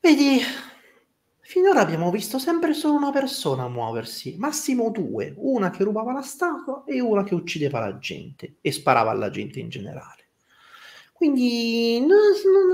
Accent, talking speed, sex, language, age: native, 145 wpm, male, Italian, 30-49